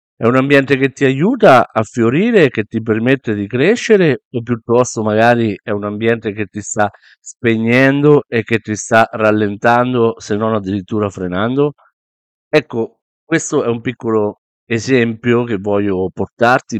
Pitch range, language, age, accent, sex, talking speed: 95-115 Hz, Italian, 50-69, native, male, 145 wpm